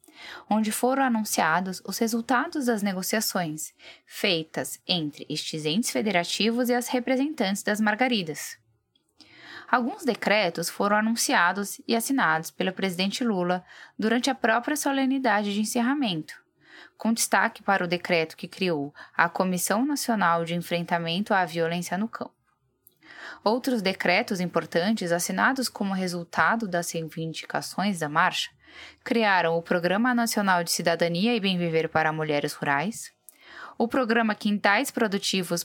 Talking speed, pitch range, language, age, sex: 125 wpm, 170-230 Hz, Portuguese, 10-29, female